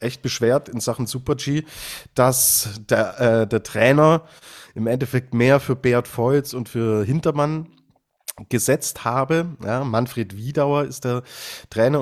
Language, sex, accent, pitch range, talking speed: German, male, German, 110-140 Hz, 135 wpm